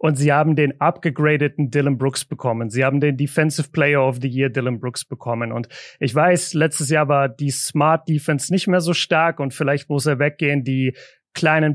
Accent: German